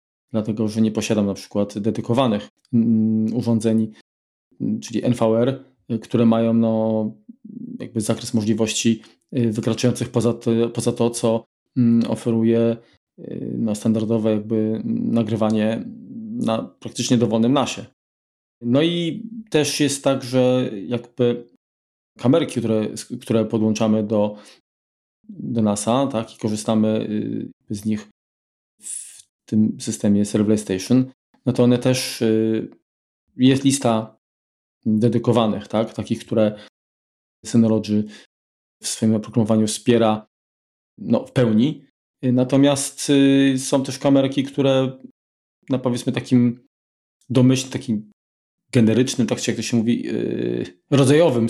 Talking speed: 110 wpm